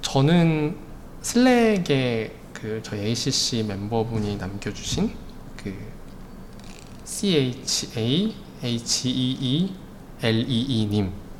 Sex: male